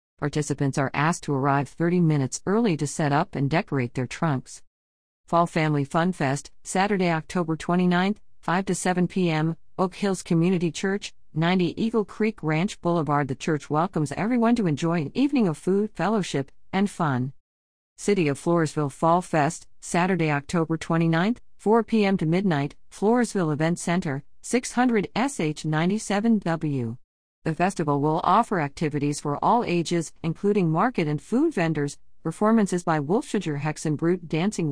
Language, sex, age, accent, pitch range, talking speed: English, female, 50-69, American, 150-195 Hz, 145 wpm